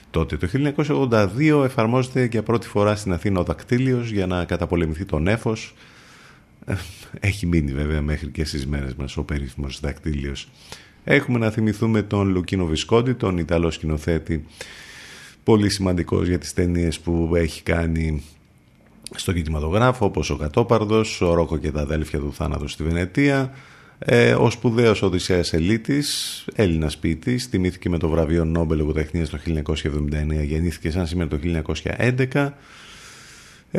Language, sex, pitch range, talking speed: Greek, male, 80-110 Hz, 140 wpm